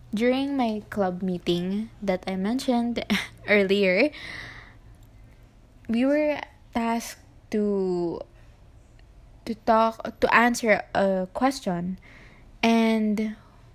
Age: 20-39